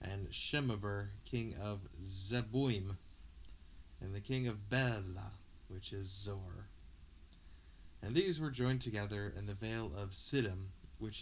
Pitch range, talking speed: 80-110 Hz, 130 wpm